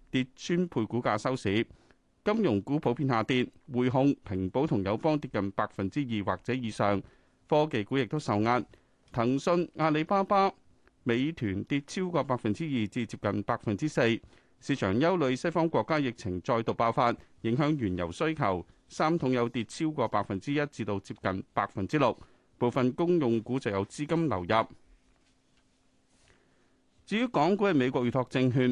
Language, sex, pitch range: Chinese, male, 105-145 Hz